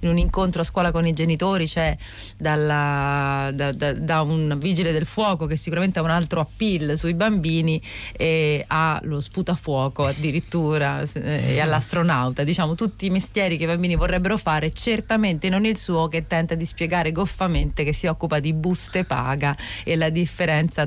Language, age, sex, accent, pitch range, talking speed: Italian, 30-49, female, native, 150-185 Hz, 165 wpm